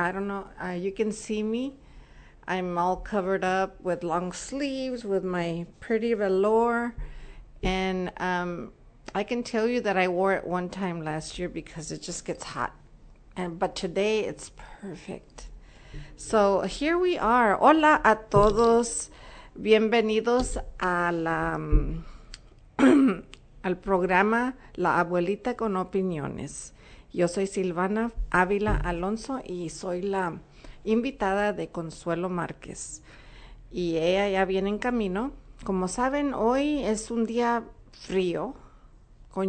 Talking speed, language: 130 wpm, English